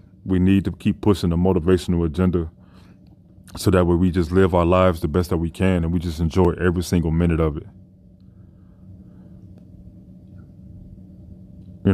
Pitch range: 90-95 Hz